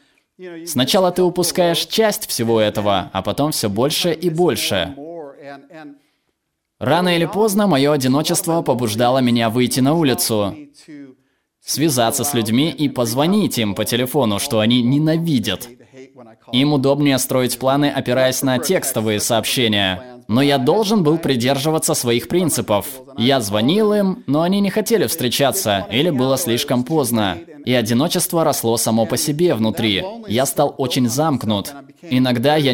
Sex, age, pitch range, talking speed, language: male, 20-39, 115-155 Hz, 135 wpm, Russian